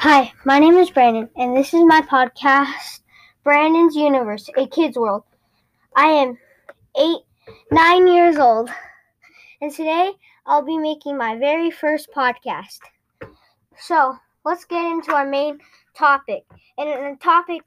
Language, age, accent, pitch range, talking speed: English, 10-29, American, 275-345 Hz, 135 wpm